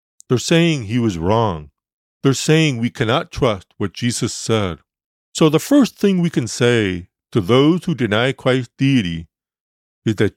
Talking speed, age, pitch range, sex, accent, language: 160 wpm, 50-69, 100-165 Hz, male, American, English